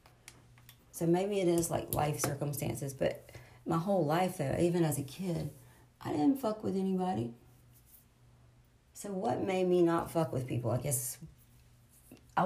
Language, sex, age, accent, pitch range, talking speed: English, female, 40-59, American, 125-180 Hz, 155 wpm